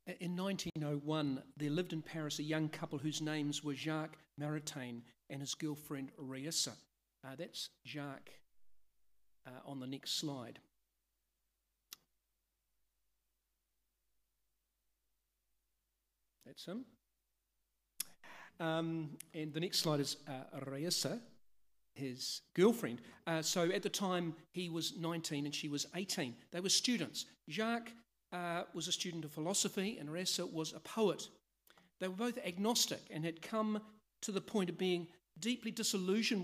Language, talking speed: English, 130 wpm